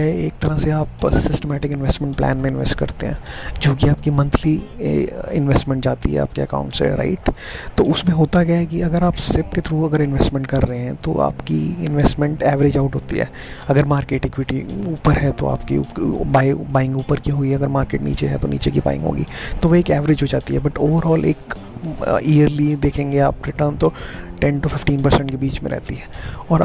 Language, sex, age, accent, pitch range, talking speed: Hindi, male, 20-39, native, 130-150 Hz, 200 wpm